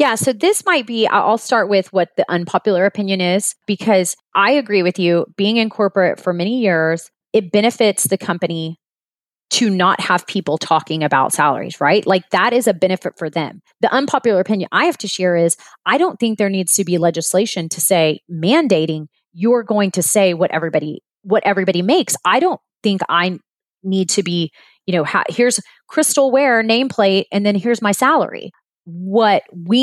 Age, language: 30-49, English